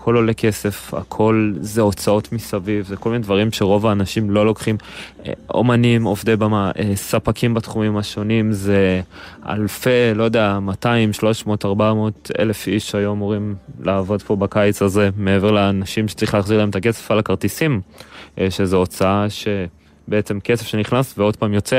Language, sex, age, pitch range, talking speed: Hebrew, male, 20-39, 95-110 Hz, 155 wpm